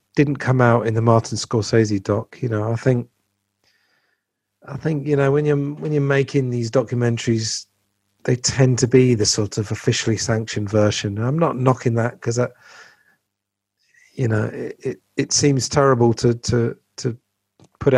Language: English